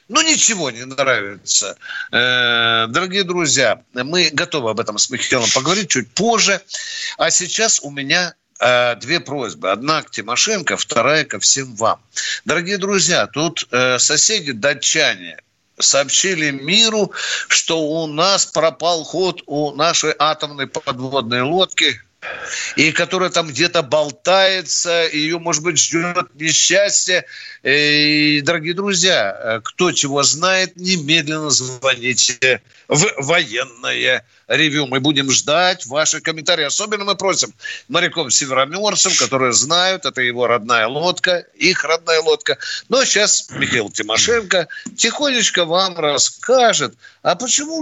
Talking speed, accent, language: 120 wpm, native, Russian